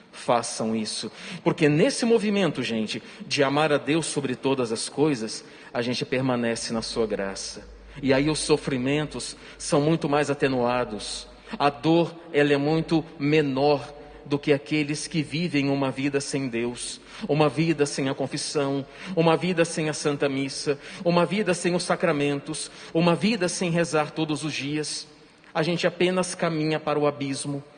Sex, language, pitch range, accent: male, Portuguese, 140-170 Hz, Brazilian